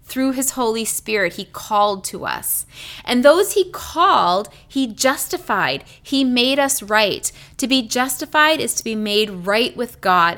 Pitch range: 200-260 Hz